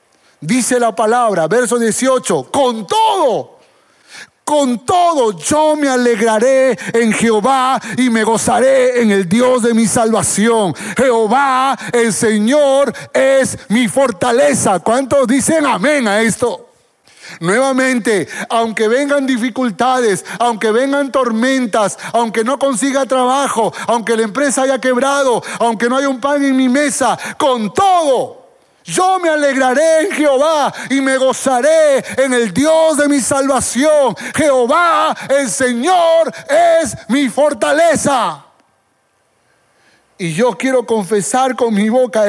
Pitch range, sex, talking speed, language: 225-270 Hz, male, 125 wpm, Spanish